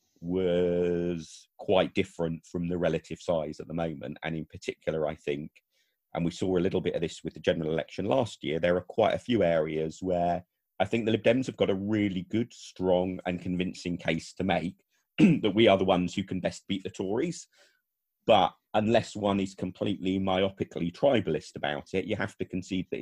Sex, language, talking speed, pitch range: male, English, 200 wpm, 85-95 Hz